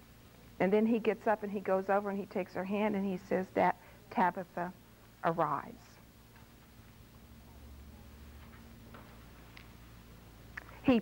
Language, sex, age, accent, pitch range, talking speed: English, female, 60-79, American, 165-235 Hz, 115 wpm